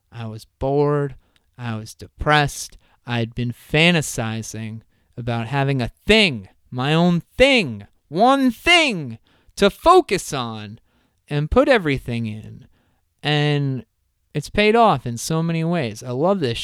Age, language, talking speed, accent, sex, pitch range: 30-49, English, 135 wpm, American, male, 115-165 Hz